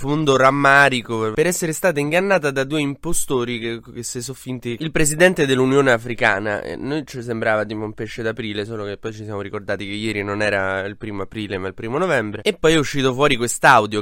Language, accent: Italian, native